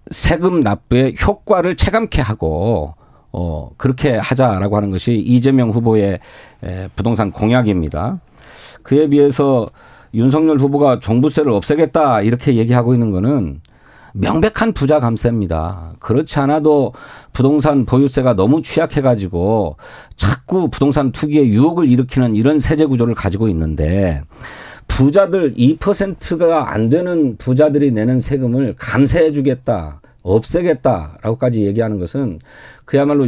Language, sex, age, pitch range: Korean, male, 40-59, 105-150 Hz